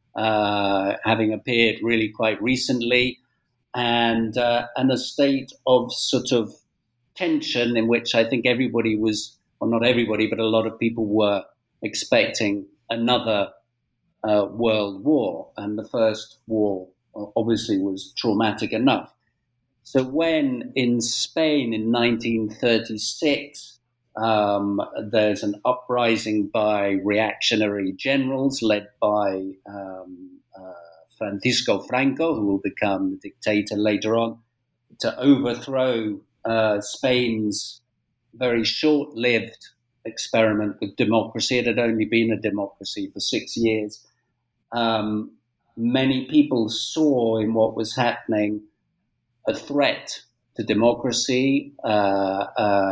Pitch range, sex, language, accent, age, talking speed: 105-125 Hz, male, English, British, 50-69, 115 wpm